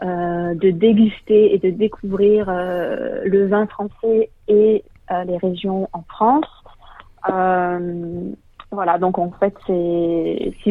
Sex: female